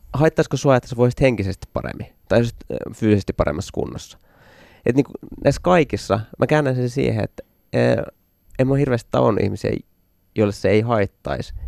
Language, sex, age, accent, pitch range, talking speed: Finnish, male, 20-39, native, 95-125 Hz, 160 wpm